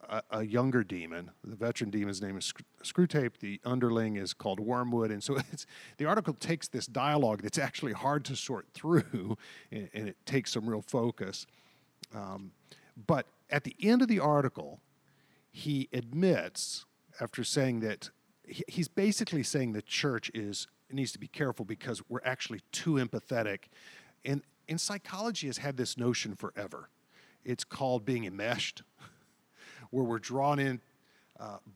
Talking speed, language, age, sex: 150 wpm, English, 50-69, male